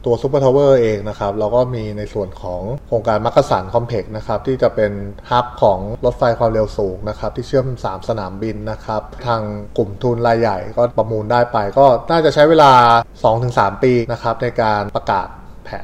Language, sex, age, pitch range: Thai, male, 20-39, 105-125 Hz